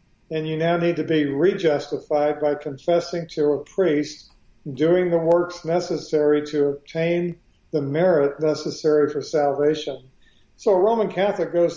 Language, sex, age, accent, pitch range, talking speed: English, male, 50-69, American, 150-175 Hz, 145 wpm